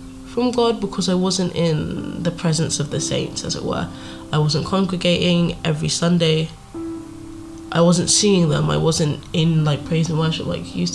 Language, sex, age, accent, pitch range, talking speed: English, female, 10-29, British, 110-180 Hz, 180 wpm